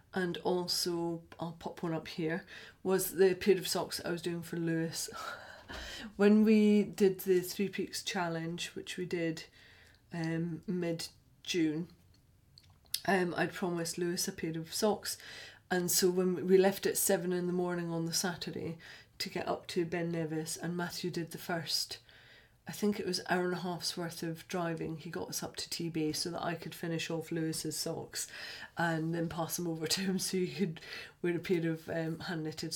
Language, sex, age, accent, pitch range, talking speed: English, female, 40-59, British, 165-190 Hz, 185 wpm